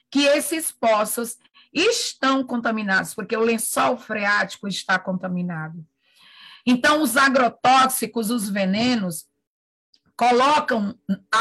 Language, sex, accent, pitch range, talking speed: English, female, Brazilian, 205-275 Hz, 95 wpm